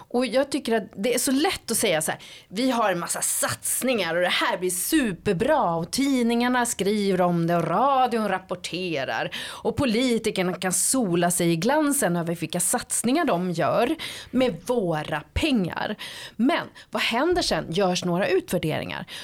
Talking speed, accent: 160 wpm, native